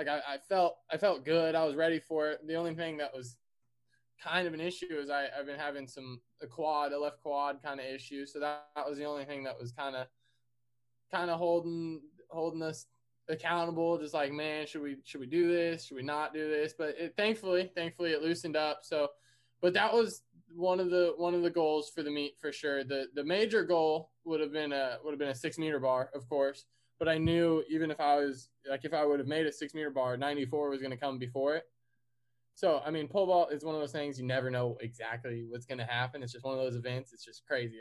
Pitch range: 130-160 Hz